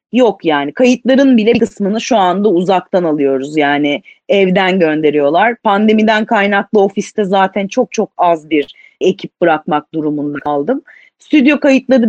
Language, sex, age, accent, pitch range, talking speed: Turkish, female, 30-49, native, 190-255 Hz, 130 wpm